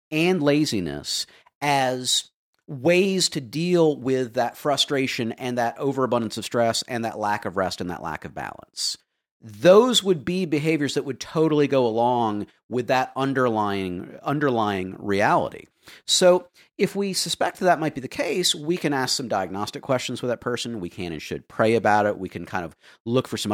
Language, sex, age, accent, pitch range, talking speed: English, male, 40-59, American, 105-160 Hz, 180 wpm